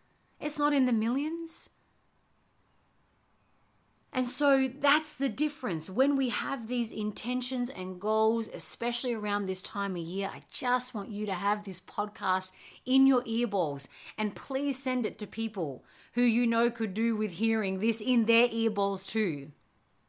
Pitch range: 165-225 Hz